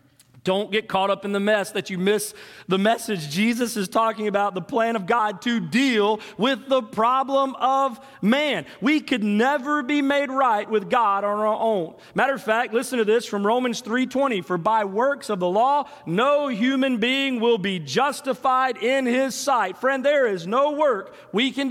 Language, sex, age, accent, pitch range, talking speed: English, male, 40-59, American, 185-255 Hz, 195 wpm